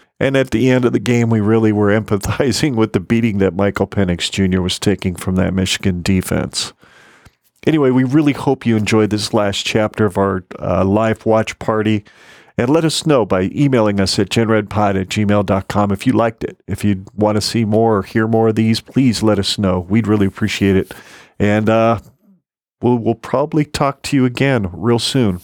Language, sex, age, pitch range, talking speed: English, male, 40-59, 100-125 Hz, 200 wpm